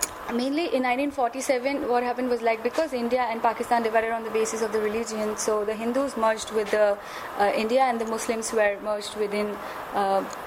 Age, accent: 20-39, Indian